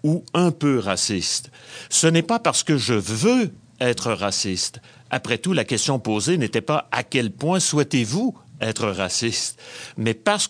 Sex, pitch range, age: male, 115-165 Hz, 60-79